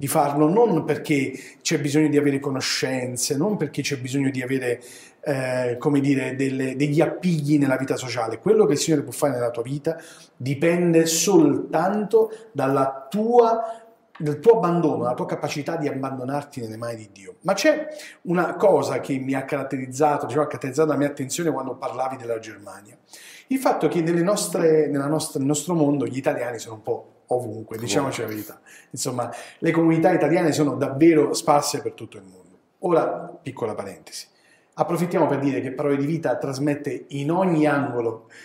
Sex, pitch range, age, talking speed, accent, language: male, 130-160 Hz, 40-59, 175 wpm, native, Italian